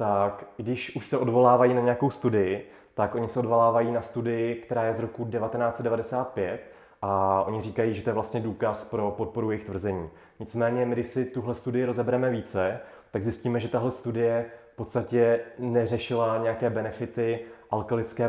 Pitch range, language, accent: 110-120 Hz, Czech, native